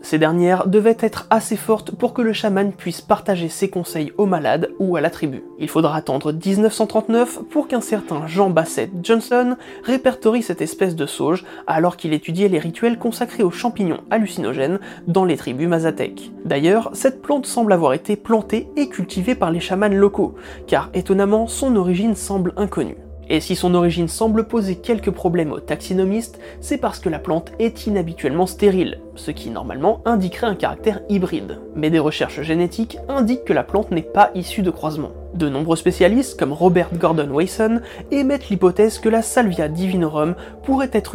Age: 20-39